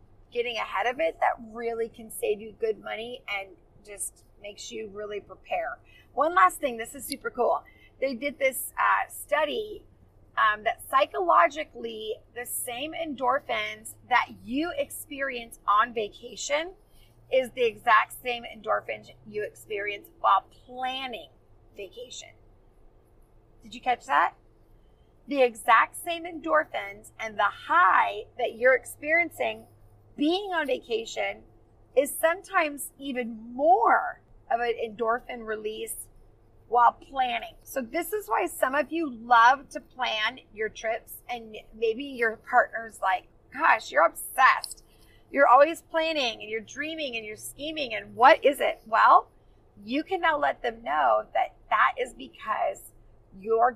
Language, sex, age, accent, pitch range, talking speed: English, female, 30-49, American, 220-315 Hz, 135 wpm